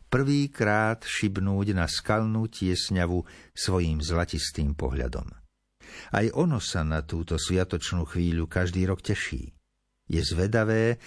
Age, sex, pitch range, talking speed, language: 60-79, male, 90-115 Hz, 110 wpm, Slovak